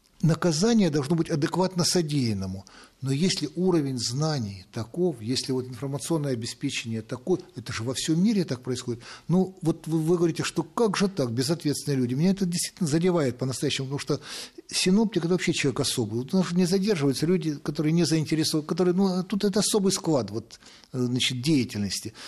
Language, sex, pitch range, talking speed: Russian, male, 125-175 Hz, 170 wpm